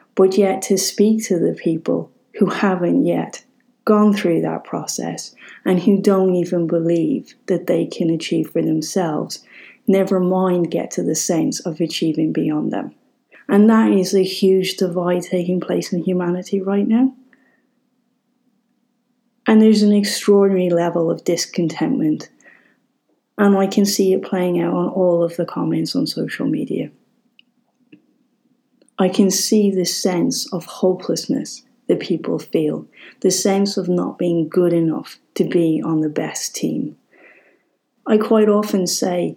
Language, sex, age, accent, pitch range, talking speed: English, female, 30-49, British, 170-215 Hz, 145 wpm